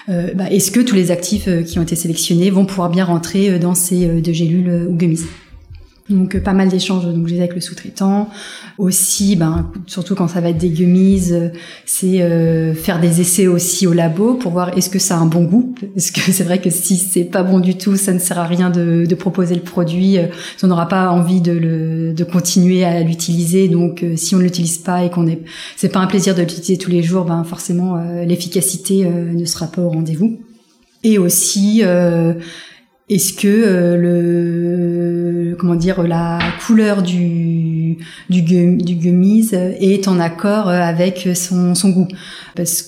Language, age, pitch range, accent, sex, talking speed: French, 30-49, 170-190 Hz, French, female, 195 wpm